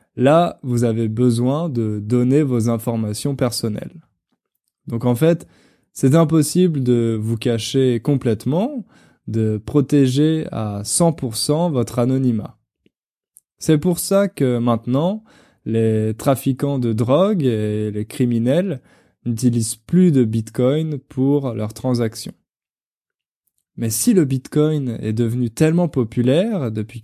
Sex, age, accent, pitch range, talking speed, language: male, 20-39, French, 115-155 Hz, 115 wpm, French